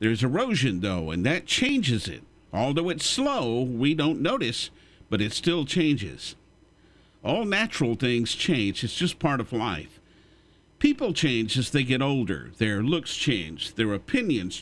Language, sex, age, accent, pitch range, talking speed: English, male, 50-69, American, 115-175 Hz, 150 wpm